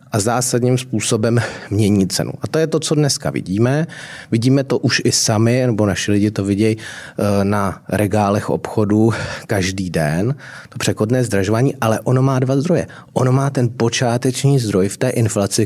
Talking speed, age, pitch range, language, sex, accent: 165 wpm, 30-49, 105-130 Hz, Czech, male, native